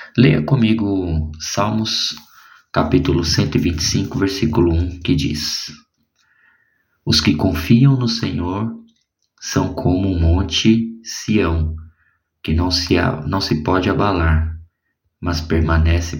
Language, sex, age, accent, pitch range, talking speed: Portuguese, male, 20-39, Brazilian, 80-110 Hz, 105 wpm